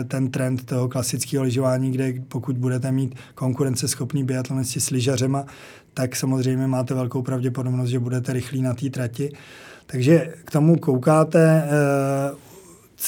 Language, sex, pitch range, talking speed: Czech, male, 130-145 Hz, 135 wpm